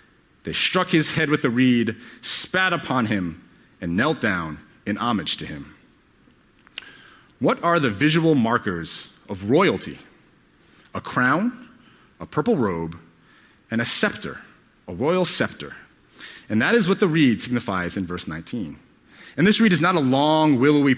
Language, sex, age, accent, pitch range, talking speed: English, male, 30-49, American, 115-170 Hz, 150 wpm